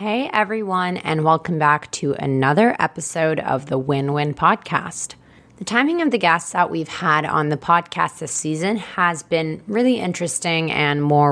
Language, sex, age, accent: English, female, 20-39, American